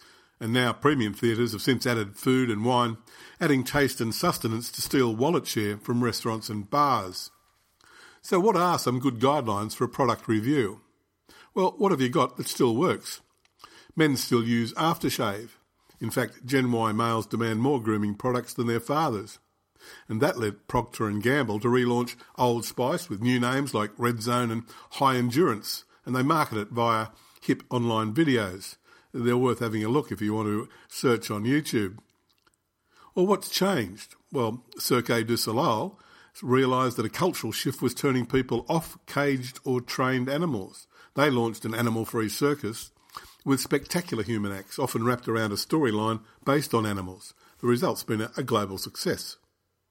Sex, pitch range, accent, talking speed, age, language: male, 110-135 Hz, Australian, 165 wpm, 50-69, English